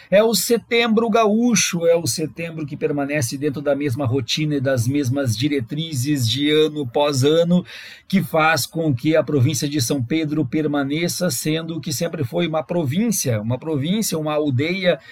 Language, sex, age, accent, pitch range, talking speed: Portuguese, male, 50-69, Brazilian, 140-165 Hz, 165 wpm